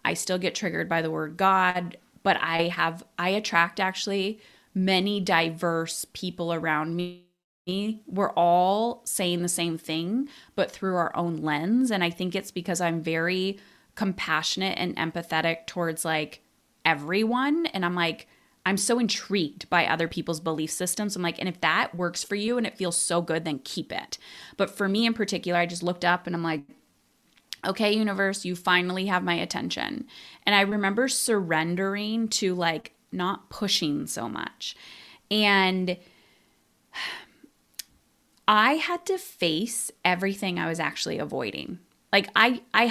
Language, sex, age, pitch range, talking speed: English, female, 20-39, 170-210 Hz, 155 wpm